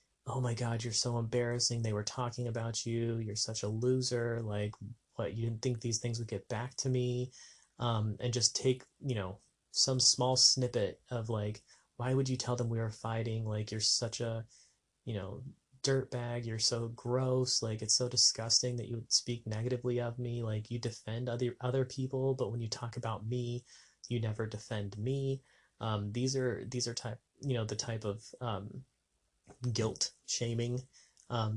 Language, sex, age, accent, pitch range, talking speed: English, male, 30-49, American, 110-125 Hz, 185 wpm